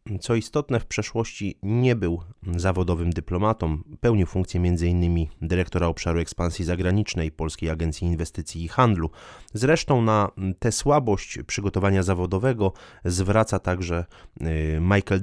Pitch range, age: 85-100 Hz, 20-39